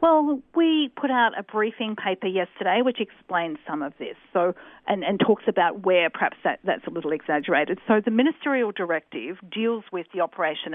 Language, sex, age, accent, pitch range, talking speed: English, female, 50-69, Australian, 175-230 Hz, 185 wpm